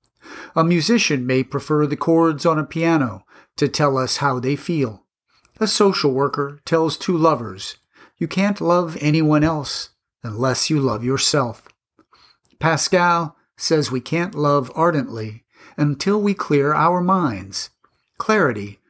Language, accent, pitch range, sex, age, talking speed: English, American, 135-170 Hz, male, 50-69, 135 wpm